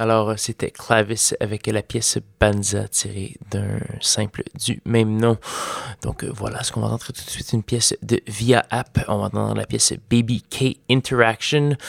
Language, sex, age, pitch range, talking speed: French, male, 20-39, 105-115 Hz, 175 wpm